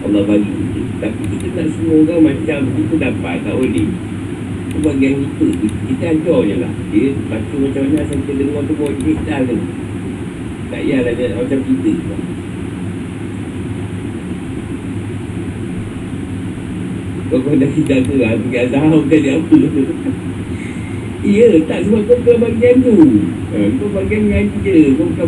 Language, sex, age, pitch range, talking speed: Malay, male, 50-69, 90-150 Hz, 140 wpm